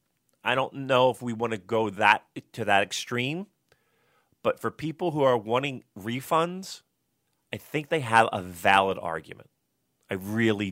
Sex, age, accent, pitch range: male, 30-49, American, 100-130 Hz